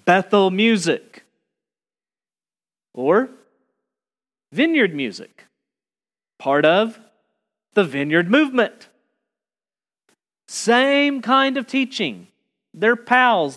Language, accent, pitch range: English, American, 150-210 Hz